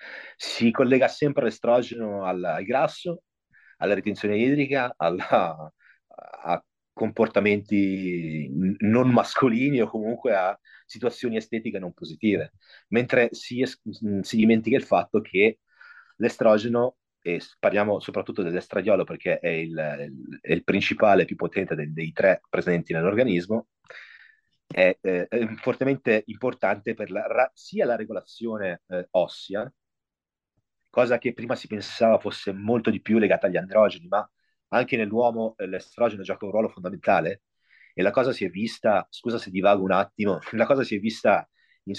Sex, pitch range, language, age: male, 100-120 Hz, Italian, 30-49